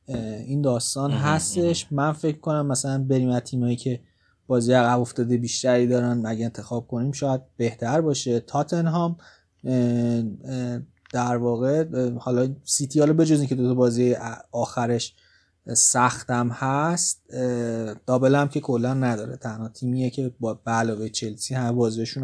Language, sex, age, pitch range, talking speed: Persian, male, 30-49, 120-140 Hz, 130 wpm